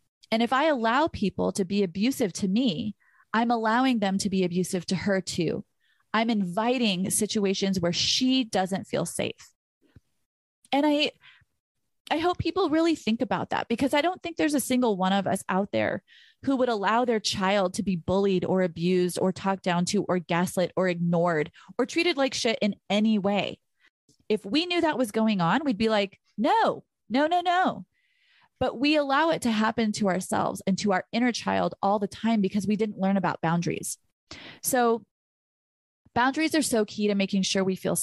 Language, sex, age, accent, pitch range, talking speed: English, female, 30-49, American, 190-245 Hz, 190 wpm